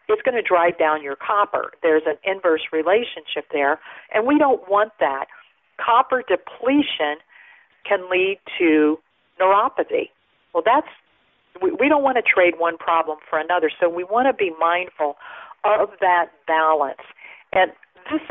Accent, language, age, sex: American, English, 50-69, female